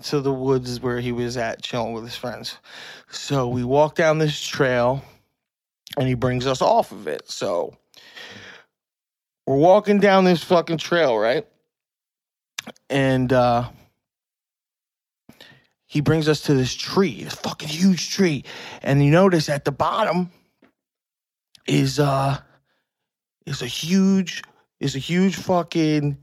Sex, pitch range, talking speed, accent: male, 135-170 Hz, 135 wpm, American